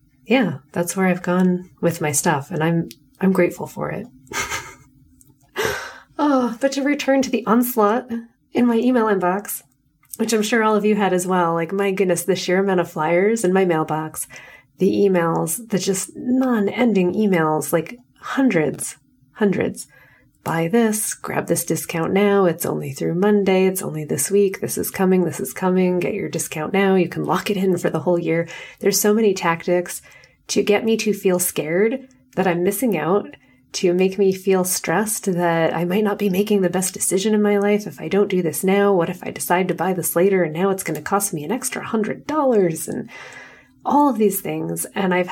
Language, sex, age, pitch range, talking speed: English, female, 30-49, 170-205 Hz, 200 wpm